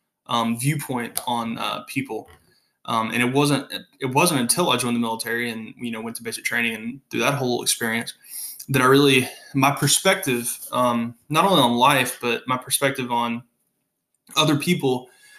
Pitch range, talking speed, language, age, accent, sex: 120-140 Hz, 170 wpm, English, 20-39, American, male